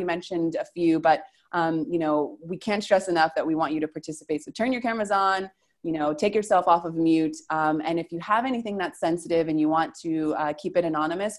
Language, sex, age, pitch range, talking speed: English, female, 20-39, 155-180 Hz, 235 wpm